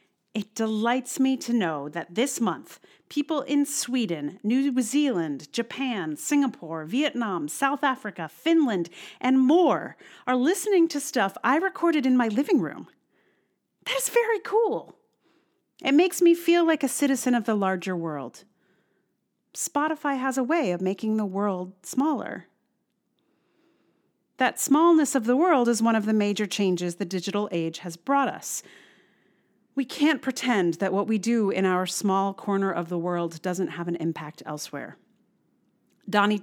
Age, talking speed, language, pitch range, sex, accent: 40-59, 150 wpm, English, 190-270 Hz, female, American